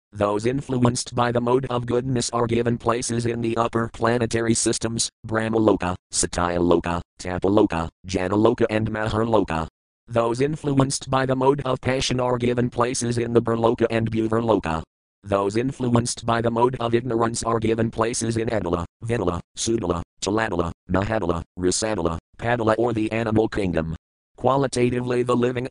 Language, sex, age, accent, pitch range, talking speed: English, male, 40-59, American, 95-120 Hz, 140 wpm